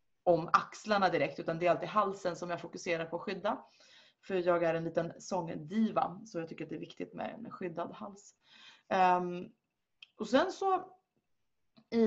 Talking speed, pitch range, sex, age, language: 180 wpm, 170-215 Hz, female, 30-49, Swedish